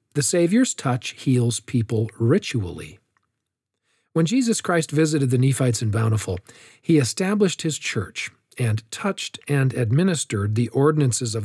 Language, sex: English, male